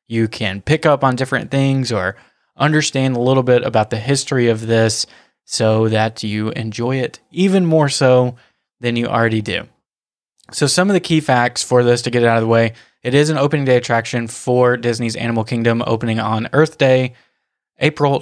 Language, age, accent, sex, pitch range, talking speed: English, 20-39, American, male, 115-140 Hz, 195 wpm